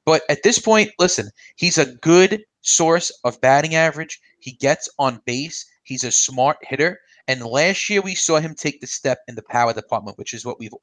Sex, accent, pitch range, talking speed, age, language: male, American, 130-175 Hz, 205 wpm, 30-49, English